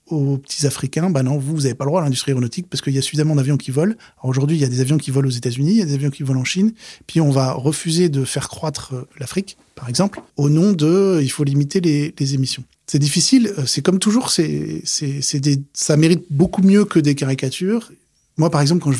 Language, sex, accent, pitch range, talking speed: French, male, French, 130-160 Hz, 265 wpm